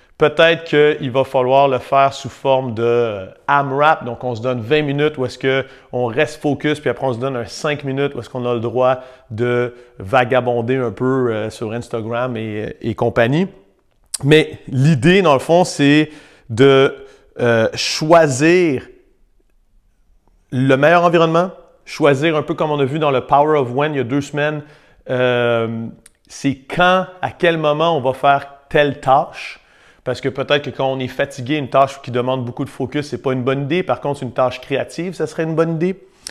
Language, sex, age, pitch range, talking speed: French, male, 40-59, 125-155 Hz, 190 wpm